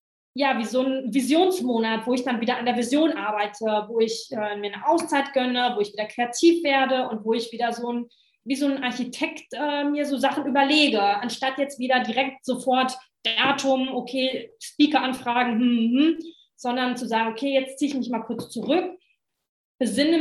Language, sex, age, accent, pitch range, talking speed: German, female, 20-39, German, 220-260 Hz, 185 wpm